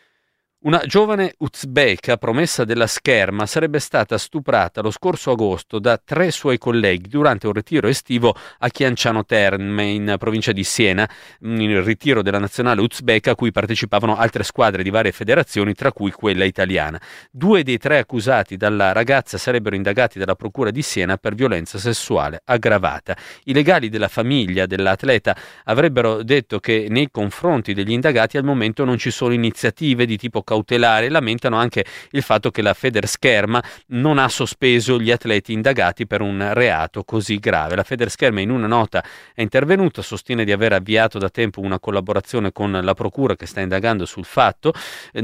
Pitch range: 100-125 Hz